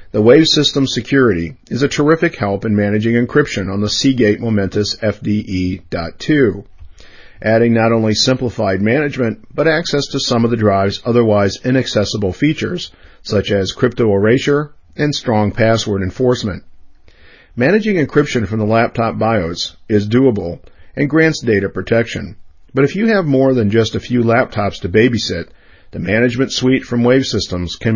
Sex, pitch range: male, 100-130 Hz